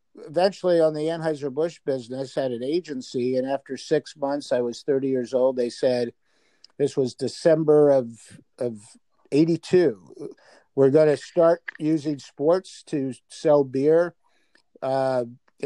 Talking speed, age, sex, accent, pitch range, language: 140 wpm, 50-69, male, American, 125-155 Hz, English